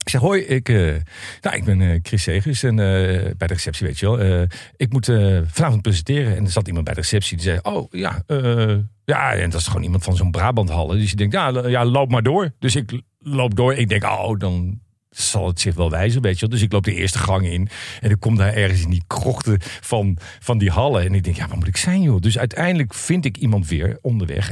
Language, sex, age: Dutch, male, 50-69